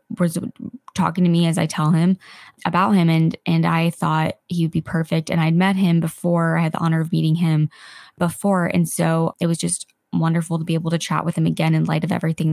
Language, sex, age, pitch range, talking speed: English, female, 20-39, 165-185 Hz, 235 wpm